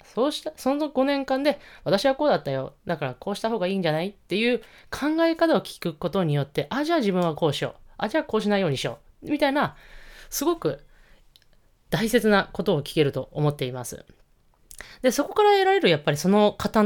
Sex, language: female, Japanese